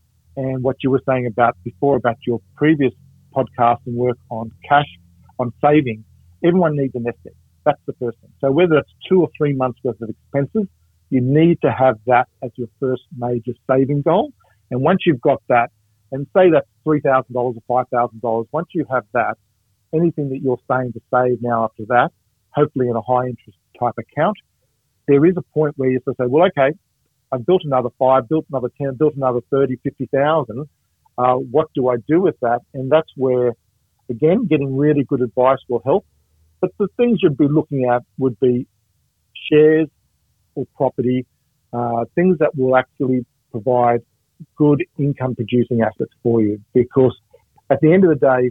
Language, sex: English, male